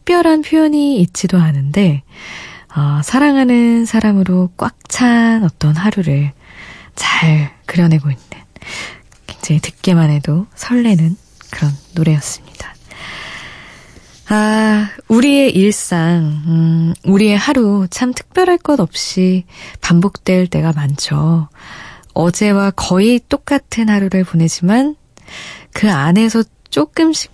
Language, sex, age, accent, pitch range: Korean, female, 20-39, native, 160-220 Hz